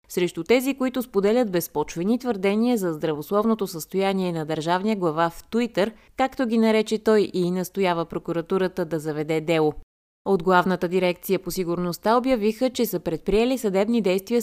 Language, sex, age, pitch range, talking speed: Bulgarian, female, 20-39, 170-220 Hz, 145 wpm